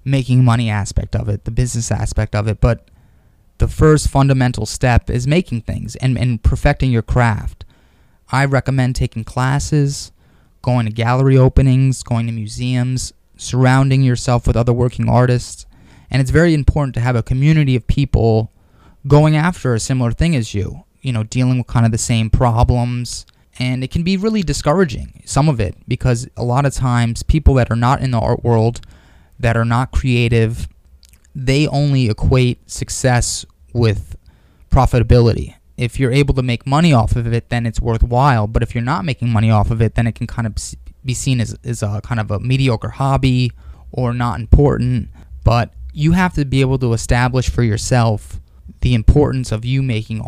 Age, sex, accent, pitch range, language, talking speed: 20-39, male, American, 110-130 Hz, English, 180 wpm